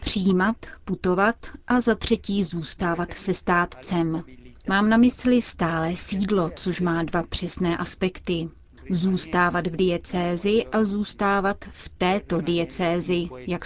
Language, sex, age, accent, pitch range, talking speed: Czech, female, 30-49, native, 170-195 Hz, 120 wpm